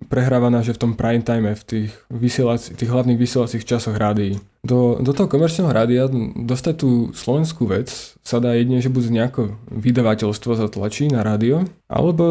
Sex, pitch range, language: male, 110-130 Hz, Slovak